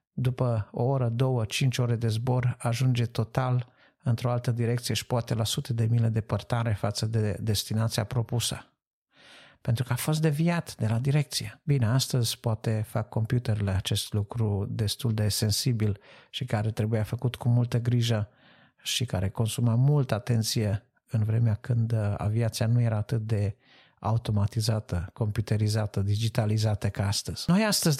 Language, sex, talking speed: Romanian, male, 150 wpm